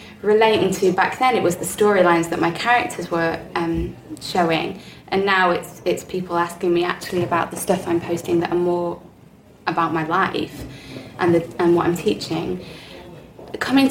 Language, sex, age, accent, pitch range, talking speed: English, female, 20-39, British, 170-205 Hz, 175 wpm